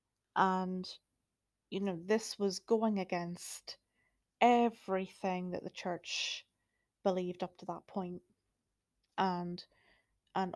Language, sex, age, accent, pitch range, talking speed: English, female, 30-49, British, 175-200 Hz, 100 wpm